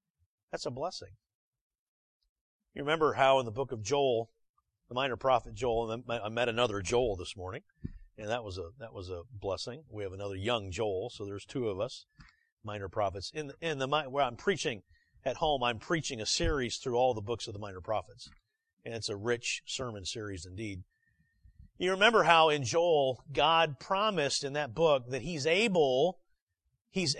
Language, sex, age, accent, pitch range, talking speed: English, male, 40-59, American, 115-190 Hz, 185 wpm